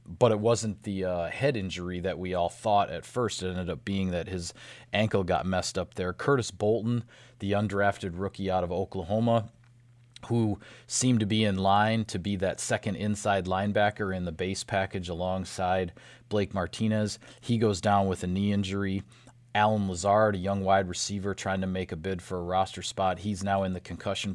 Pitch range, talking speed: 95-115 Hz, 190 wpm